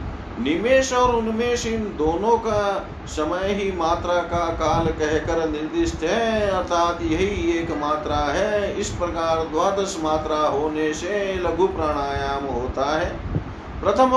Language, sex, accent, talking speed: Hindi, male, native, 125 wpm